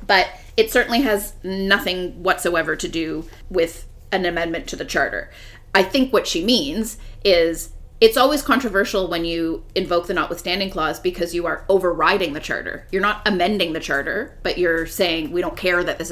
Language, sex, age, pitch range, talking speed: English, female, 30-49, 170-240 Hz, 180 wpm